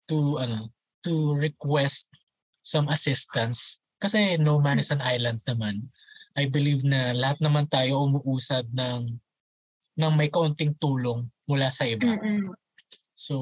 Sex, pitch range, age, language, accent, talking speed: male, 125-165 Hz, 20-39, Filipino, native, 130 wpm